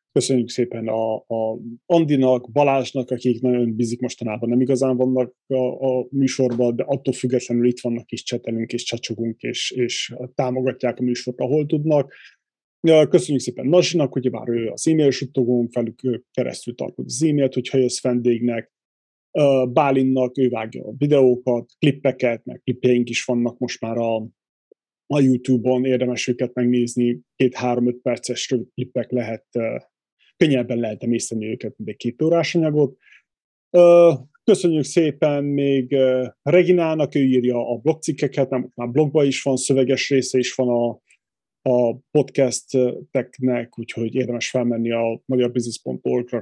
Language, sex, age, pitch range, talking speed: Hungarian, male, 30-49, 120-135 Hz, 130 wpm